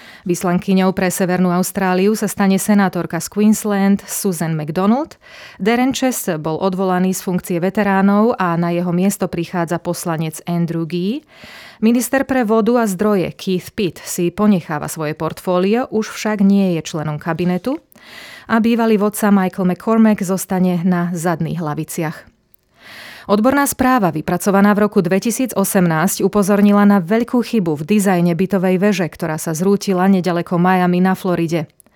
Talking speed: 135 wpm